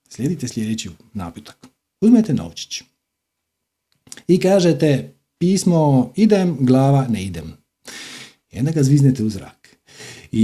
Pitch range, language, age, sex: 125-165 Hz, Croatian, 40-59, male